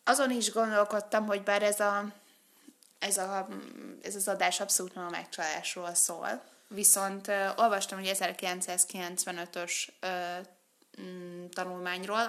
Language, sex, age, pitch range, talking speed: Hungarian, female, 20-39, 180-210 Hz, 105 wpm